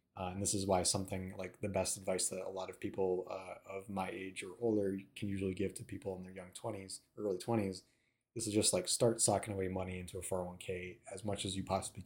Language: English